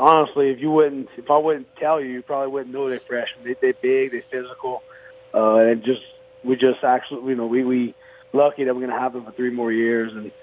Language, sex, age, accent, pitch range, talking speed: English, male, 30-49, American, 120-150 Hz, 230 wpm